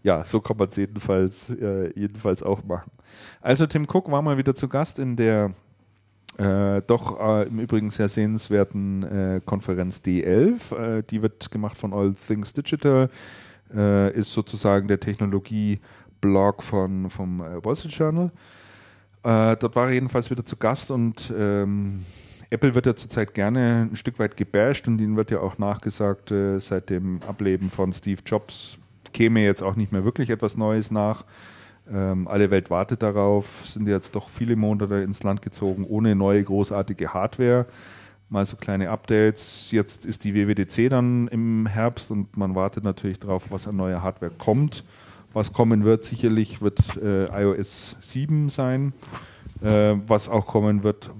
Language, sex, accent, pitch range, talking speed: German, male, German, 100-115 Hz, 165 wpm